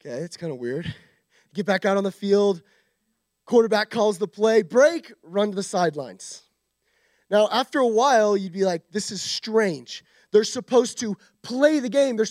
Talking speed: 180 wpm